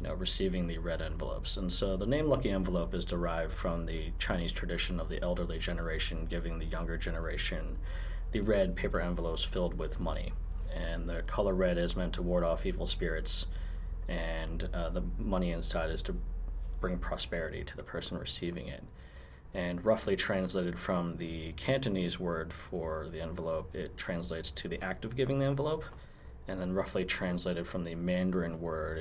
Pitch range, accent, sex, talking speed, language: 80-90 Hz, American, male, 170 wpm, English